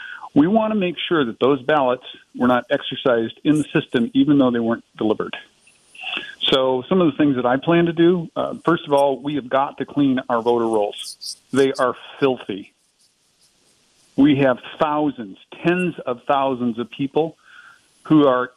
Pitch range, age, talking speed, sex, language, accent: 125-175 Hz, 50-69, 170 wpm, male, English, American